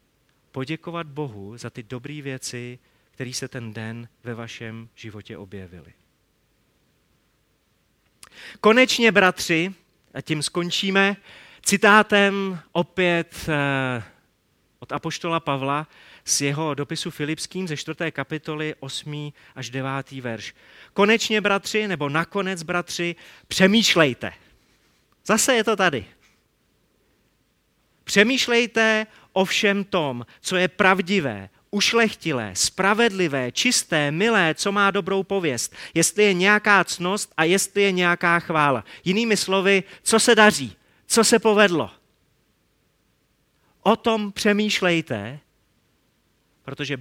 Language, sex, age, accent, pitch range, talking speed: Czech, male, 30-49, native, 125-195 Hz, 100 wpm